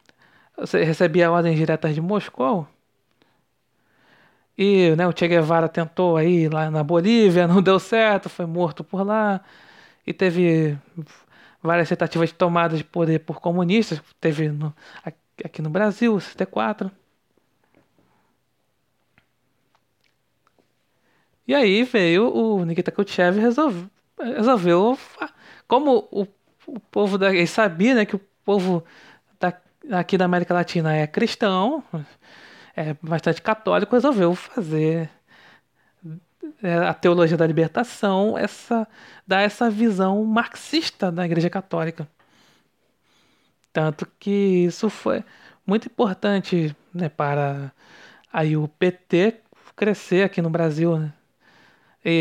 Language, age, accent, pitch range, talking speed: Portuguese, 20-39, Brazilian, 165-205 Hz, 110 wpm